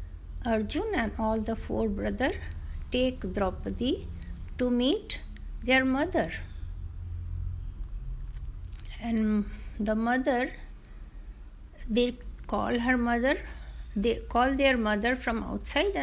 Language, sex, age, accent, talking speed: Hindi, female, 60-79, native, 95 wpm